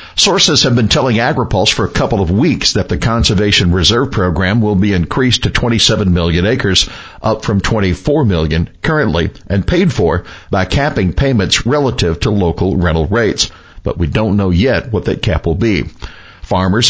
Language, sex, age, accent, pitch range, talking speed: English, male, 60-79, American, 95-120 Hz, 175 wpm